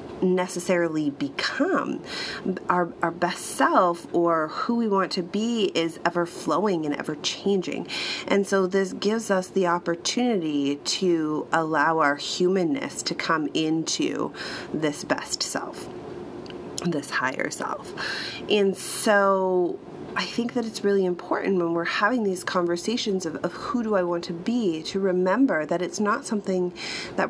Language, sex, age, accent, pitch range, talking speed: English, female, 30-49, American, 165-190 Hz, 145 wpm